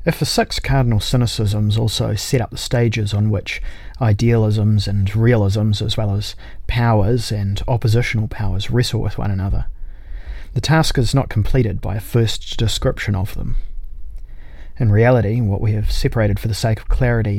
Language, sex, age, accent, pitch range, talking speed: English, male, 30-49, Australian, 100-120 Hz, 165 wpm